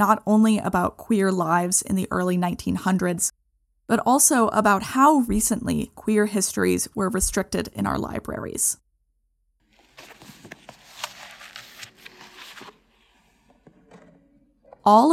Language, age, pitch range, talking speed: English, 20-39, 190-220 Hz, 85 wpm